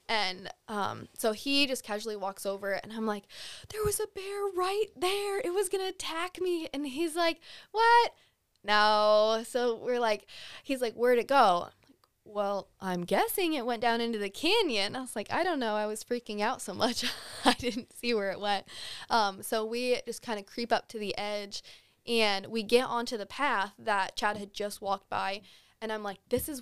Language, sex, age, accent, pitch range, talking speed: English, female, 20-39, American, 205-275 Hz, 205 wpm